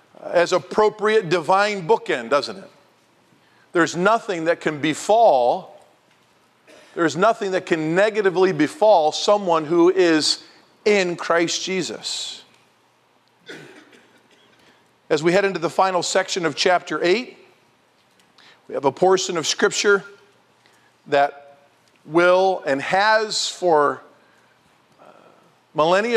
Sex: male